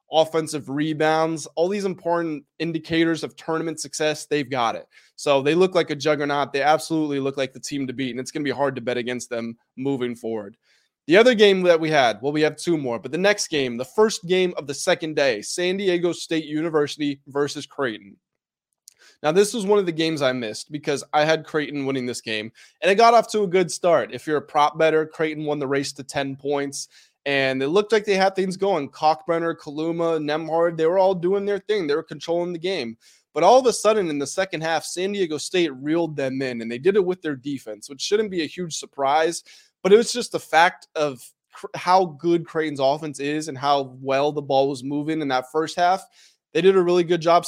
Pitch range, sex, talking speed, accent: 140-170 Hz, male, 230 wpm, American